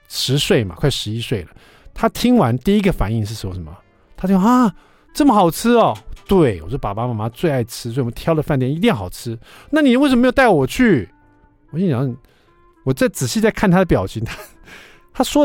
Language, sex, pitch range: Chinese, male, 105-165 Hz